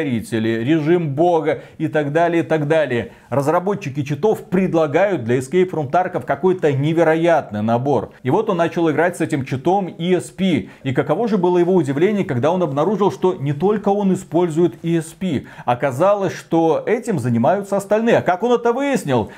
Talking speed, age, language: 160 wpm, 30-49, Russian